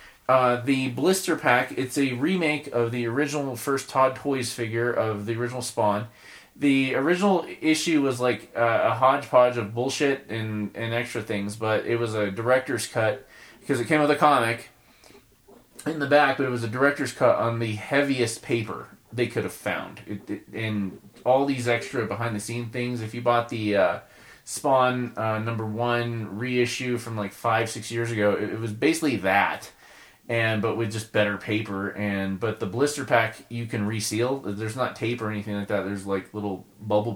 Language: English